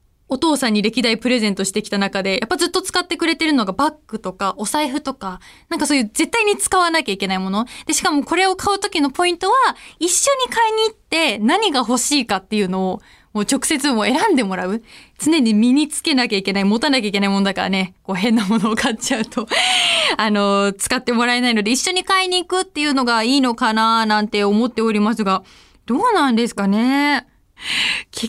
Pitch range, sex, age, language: 215-330 Hz, female, 20-39, Japanese